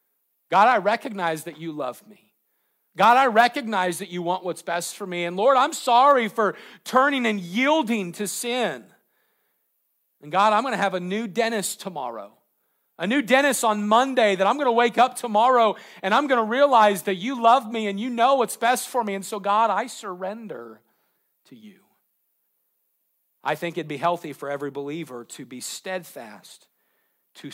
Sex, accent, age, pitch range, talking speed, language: male, American, 40-59, 140-215 Hz, 175 wpm, English